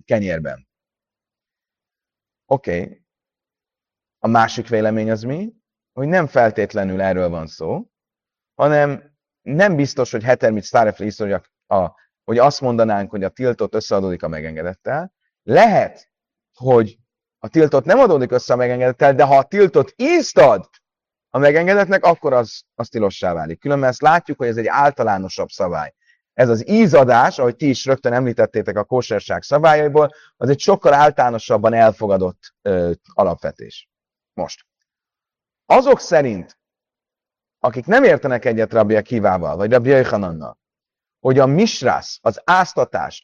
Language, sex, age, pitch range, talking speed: Hungarian, male, 30-49, 110-155 Hz, 130 wpm